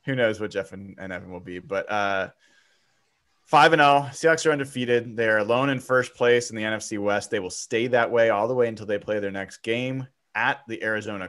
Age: 20-39